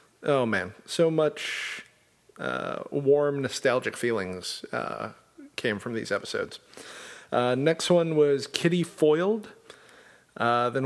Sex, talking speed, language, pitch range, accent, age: male, 115 wpm, English, 110-145 Hz, American, 40-59